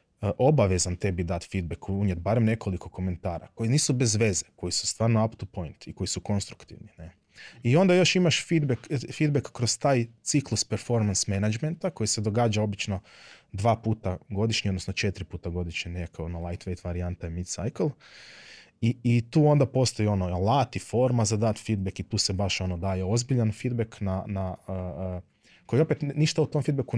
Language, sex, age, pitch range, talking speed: Croatian, male, 20-39, 95-125 Hz, 180 wpm